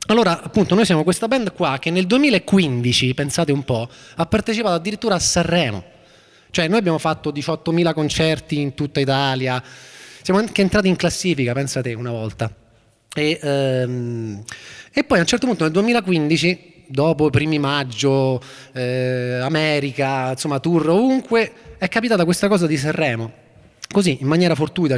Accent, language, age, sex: native, Italian, 20-39, male